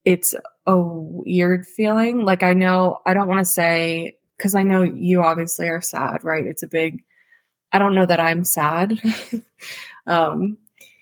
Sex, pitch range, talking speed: female, 160-185 Hz, 165 wpm